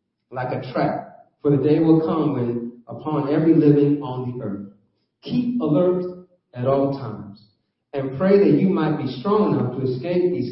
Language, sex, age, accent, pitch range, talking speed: English, male, 40-59, American, 125-180 Hz, 175 wpm